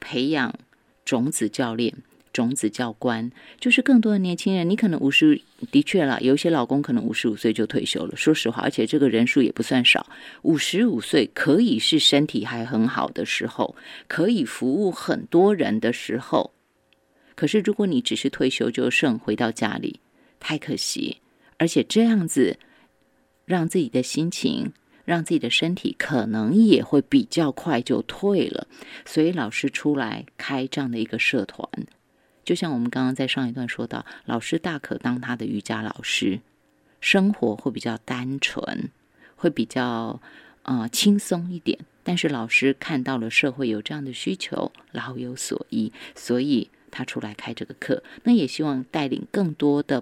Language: Chinese